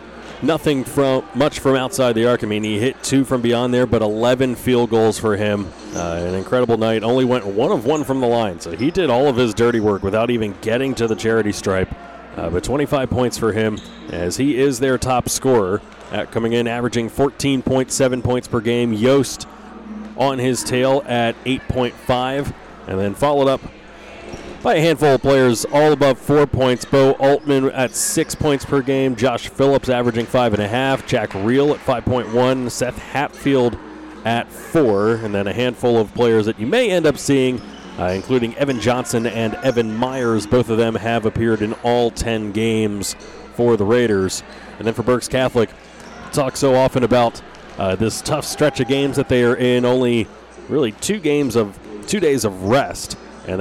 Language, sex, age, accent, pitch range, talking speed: English, male, 30-49, American, 110-135 Hz, 190 wpm